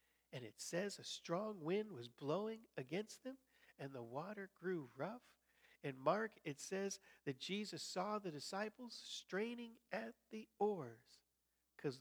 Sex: male